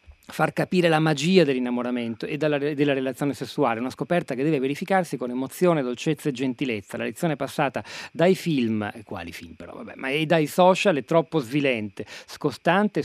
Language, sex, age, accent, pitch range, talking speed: Italian, male, 40-59, native, 125-170 Hz, 155 wpm